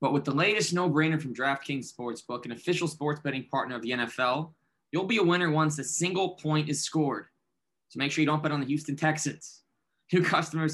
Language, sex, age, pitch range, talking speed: English, male, 20-39, 125-155 Hz, 210 wpm